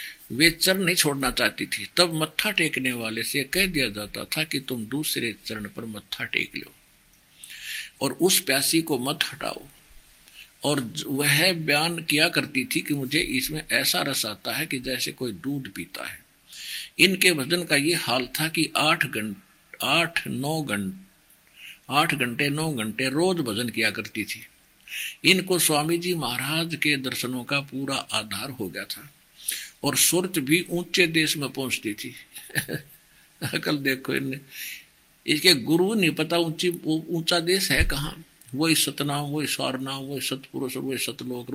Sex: male